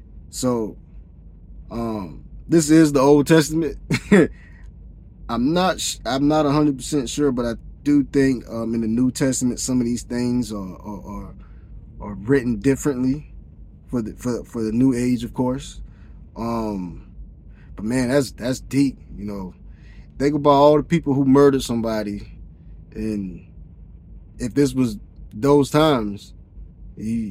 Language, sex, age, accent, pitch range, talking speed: English, male, 20-39, American, 90-130 Hz, 145 wpm